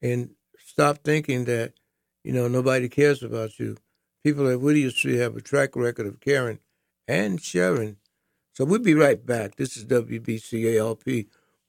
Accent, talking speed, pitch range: American, 155 wpm, 110-150 Hz